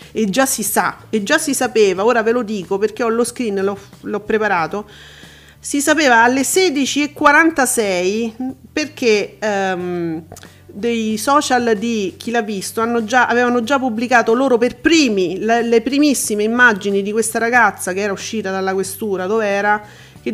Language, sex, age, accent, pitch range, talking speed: Italian, female, 40-59, native, 200-245 Hz, 160 wpm